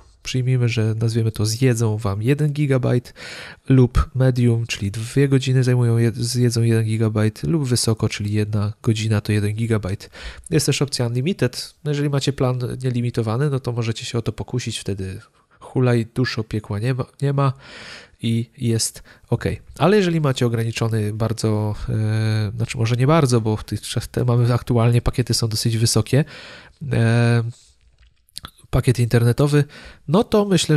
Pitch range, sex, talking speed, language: 110-130 Hz, male, 150 wpm, Polish